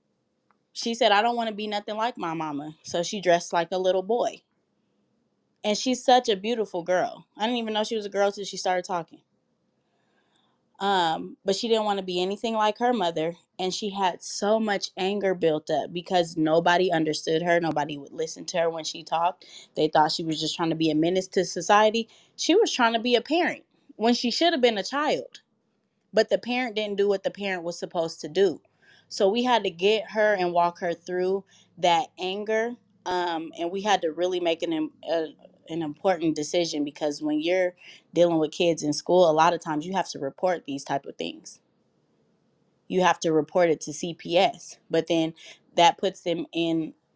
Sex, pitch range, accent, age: female, 165-220 Hz, American, 20-39